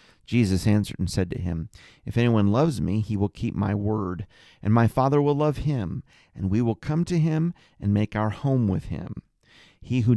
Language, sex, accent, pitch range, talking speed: English, male, American, 105-145 Hz, 205 wpm